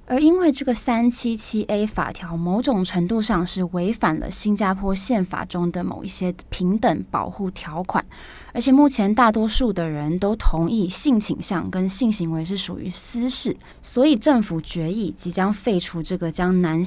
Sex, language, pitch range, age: female, Chinese, 175-235 Hz, 20-39